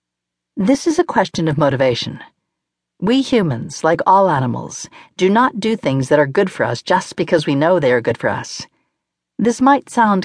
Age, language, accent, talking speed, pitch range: 50-69, English, American, 185 wpm, 145-210 Hz